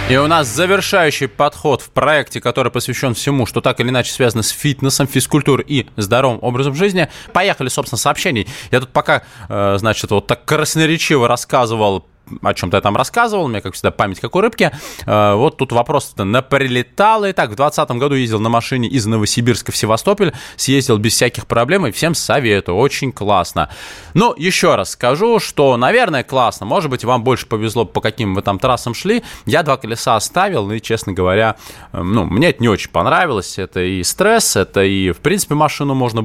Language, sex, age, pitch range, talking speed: Russian, male, 20-39, 100-140 Hz, 185 wpm